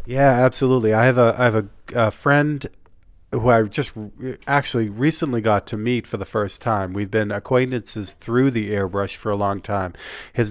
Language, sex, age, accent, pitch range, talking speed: English, male, 40-59, American, 95-115 Hz, 195 wpm